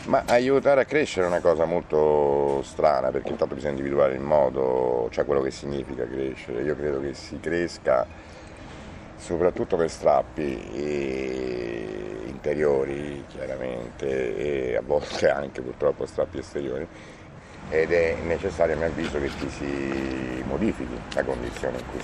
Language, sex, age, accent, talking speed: Italian, male, 50-69, native, 140 wpm